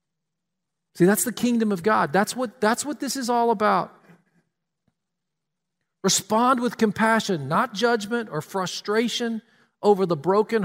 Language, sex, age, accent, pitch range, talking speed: English, male, 50-69, American, 175-230 Hz, 130 wpm